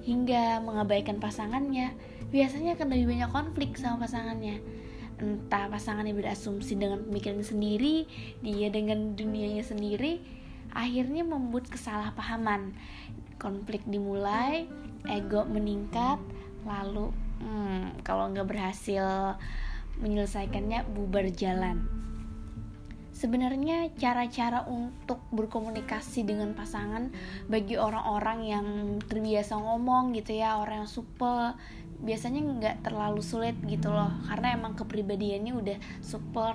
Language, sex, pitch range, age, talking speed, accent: Indonesian, female, 205-245 Hz, 20-39, 105 wpm, native